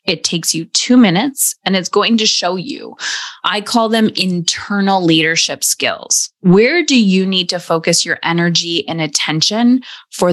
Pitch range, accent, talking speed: 165-225 Hz, American, 165 wpm